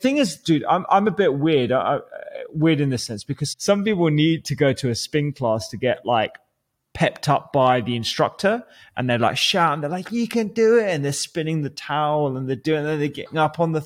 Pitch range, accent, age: 125-155 Hz, British, 20-39